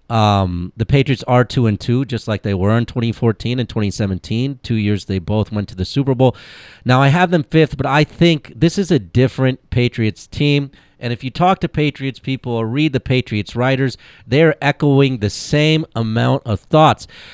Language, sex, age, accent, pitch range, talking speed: English, male, 40-59, American, 115-155 Hz, 195 wpm